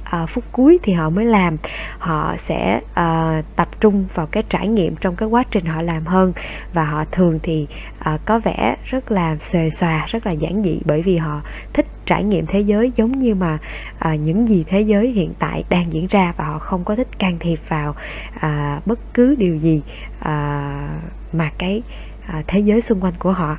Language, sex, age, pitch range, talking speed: Vietnamese, female, 20-39, 160-215 Hz, 190 wpm